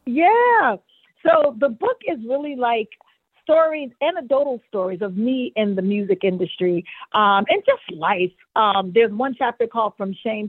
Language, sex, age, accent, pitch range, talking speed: English, female, 50-69, American, 190-250 Hz, 155 wpm